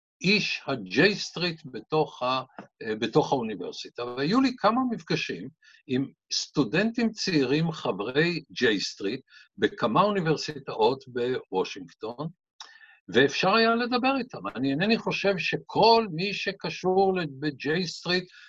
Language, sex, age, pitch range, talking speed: Hebrew, male, 60-79, 150-225 Hz, 100 wpm